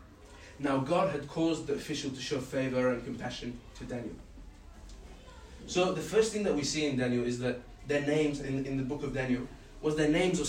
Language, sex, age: English, male, 20-39